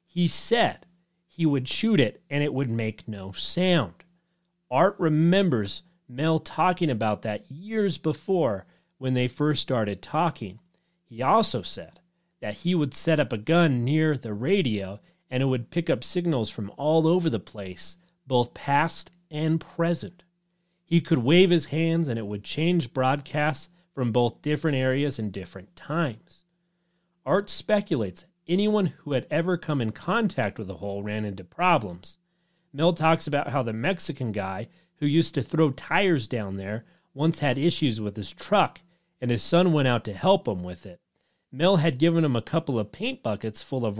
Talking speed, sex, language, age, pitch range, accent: 170 wpm, male, English, 40-59, 115-175 Hz, American